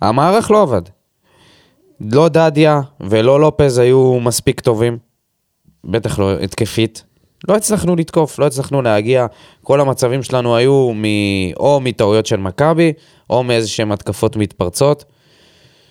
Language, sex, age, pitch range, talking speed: Hebrew, male, 20-39, 110-160 Hz, 120 wpm